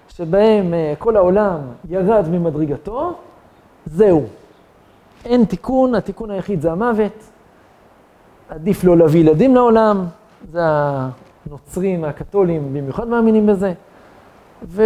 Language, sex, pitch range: Hebrew, male, 170-250 Hz